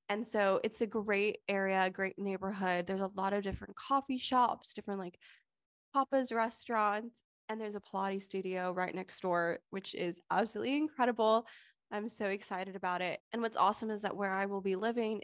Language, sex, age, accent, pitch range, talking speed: English, female, 20-39, American, 190-225 Hz, 180 wpm